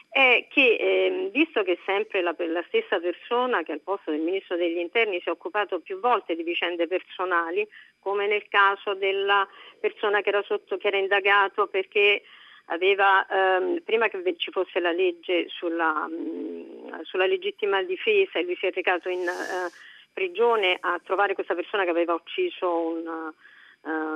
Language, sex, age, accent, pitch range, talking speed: Italian, female, 50-69, native, 180-255 Hz, 165 wpm